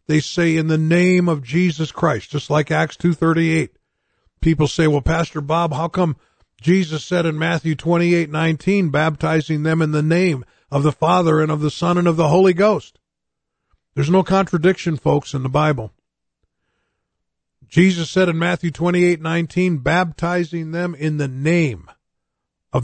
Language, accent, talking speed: English, American, 155 wpm